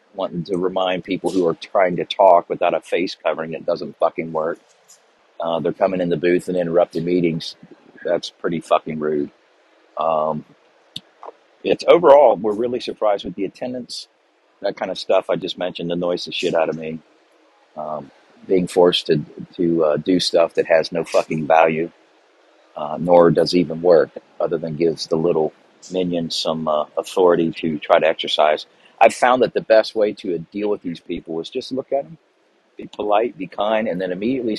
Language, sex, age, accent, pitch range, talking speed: English, male, 50-69, American, 85-95 Hz, 185 wpm